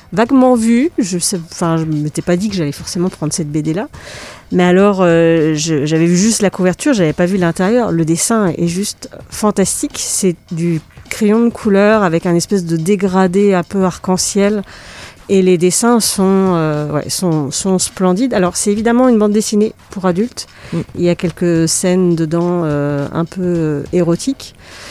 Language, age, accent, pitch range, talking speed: French, 40-59, French, 170-210 Hz, 180 wpm